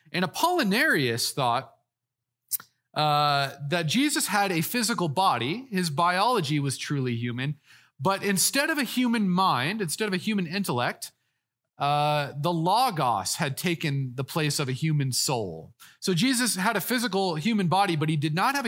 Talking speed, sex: 155 wpm, male